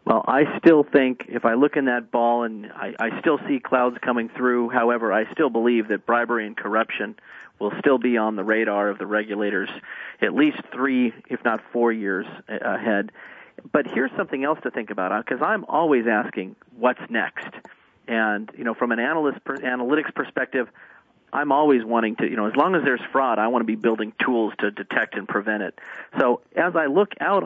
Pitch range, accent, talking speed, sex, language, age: 110-140 Hz, American, 200 wpm, male, English, 40-59